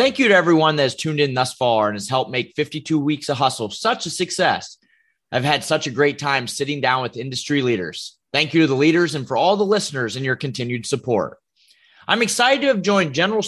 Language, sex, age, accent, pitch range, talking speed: English, male, 30-49, American, 140-190 Hz, 230 wpm